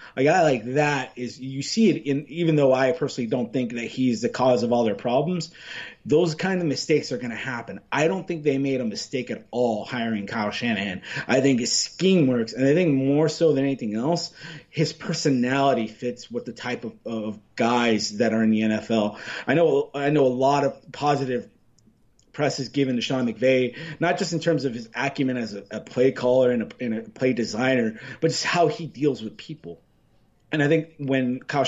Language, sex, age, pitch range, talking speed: English, male, 30-49, 120-150 Hz, 220 wpm